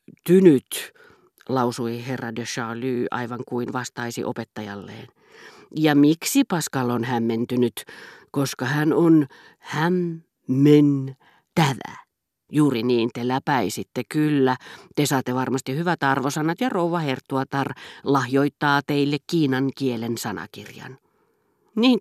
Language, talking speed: Finnish, 100 wpm